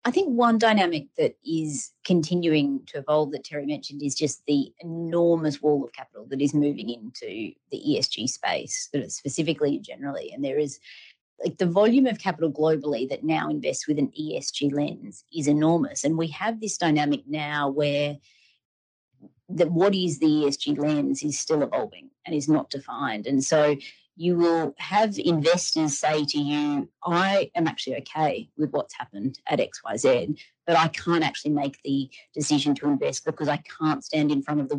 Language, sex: English, female